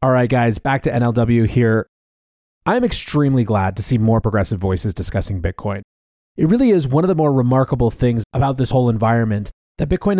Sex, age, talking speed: male, 30-49, 190 wpm